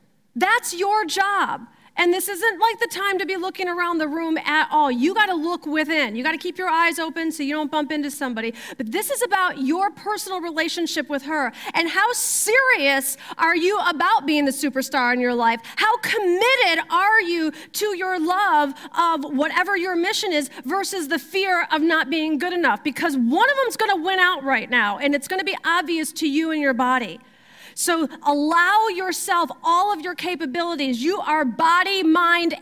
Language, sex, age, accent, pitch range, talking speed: English, female, 40-59, American, 300-380 Hz, 200 wpm